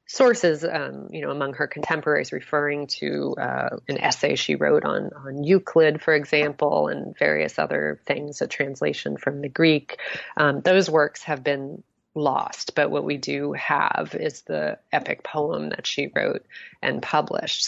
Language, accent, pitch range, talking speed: English, American, 145-185 Hz, 165 wpm